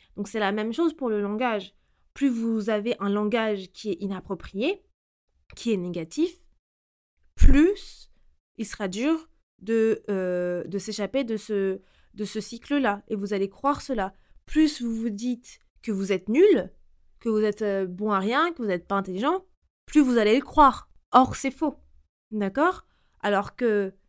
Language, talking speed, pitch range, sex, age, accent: French, 165 wpm, 195-250 Hz, female, 20-39, French